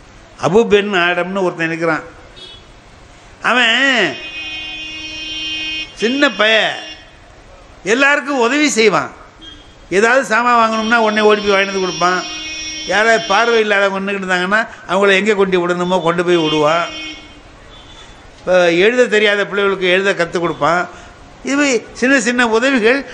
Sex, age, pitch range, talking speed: male, 60-79, 155-225 Hz, 110 wpm